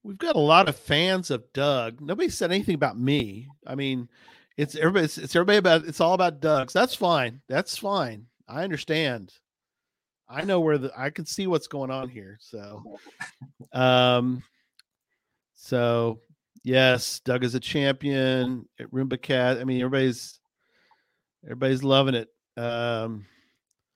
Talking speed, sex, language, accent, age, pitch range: 155 wpm, male, English, American, 40-59, 120-145 Hz